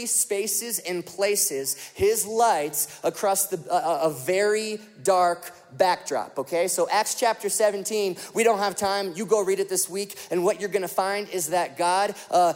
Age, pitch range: 30-49, 180-230 Hz